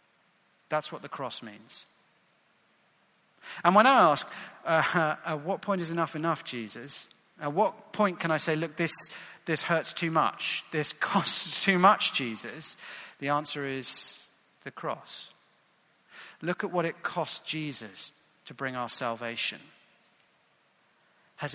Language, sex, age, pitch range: English, male, 40-59, 130-180 Hz